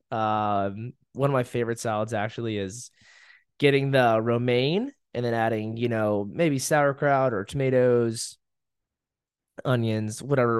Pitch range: 110-135 Hz